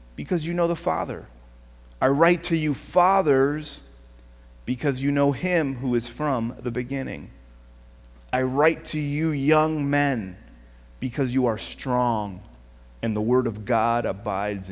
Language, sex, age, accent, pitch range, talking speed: English, male, 30-49, American, 100-155 Hz, 145 wpm